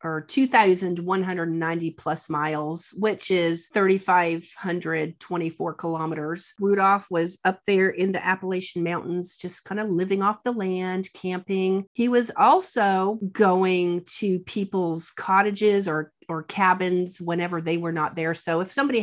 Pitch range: 160-195 Hz